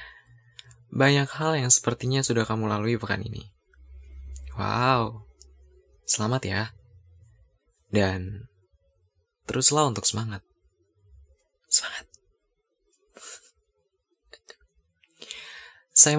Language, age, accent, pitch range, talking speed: Indonesian, 20-39, native, 100-145 Hz, 65 wpm